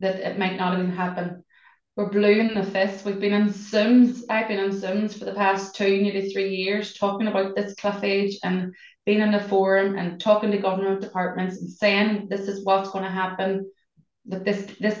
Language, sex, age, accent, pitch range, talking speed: English, female, 20-39, Irish, 190-210 Hz, 205 wpm